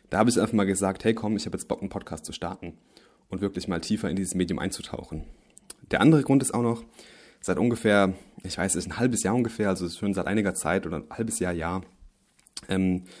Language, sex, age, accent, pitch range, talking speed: German, male, 20-39, German, 90-105 Hz, 225 wpm